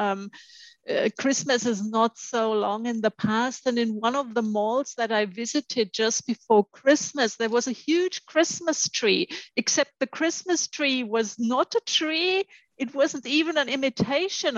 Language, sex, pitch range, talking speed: English, female, 220-290 Hz, 170 wpm